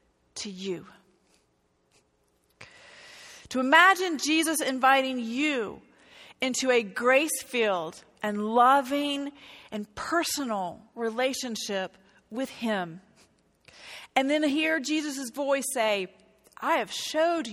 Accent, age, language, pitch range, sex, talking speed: American, 40-59, English, 200-285 Hz, female, 90 wpm